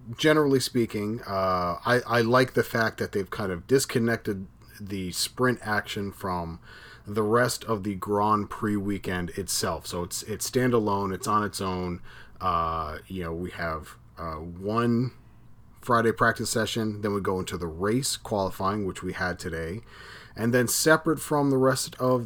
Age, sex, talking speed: 30-49, male, 165 wpm